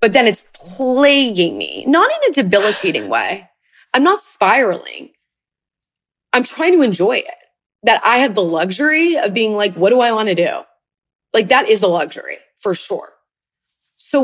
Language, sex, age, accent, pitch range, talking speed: English, female, 20-39, American, 175-250 Hz, 170 wpm